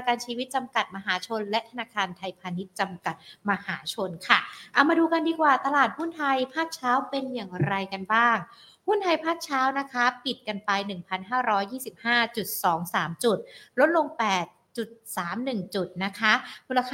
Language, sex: Thai, female